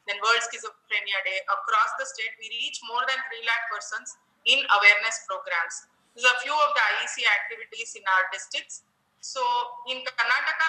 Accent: Indian